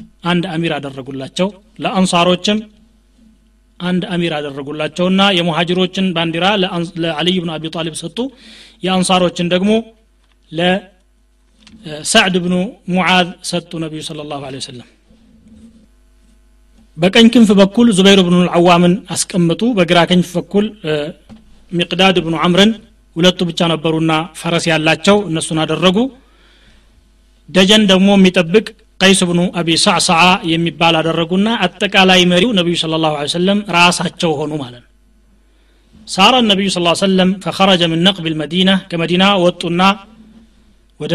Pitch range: 165-205 Hz